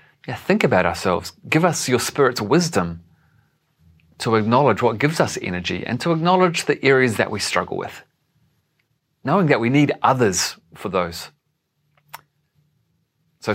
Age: 30-49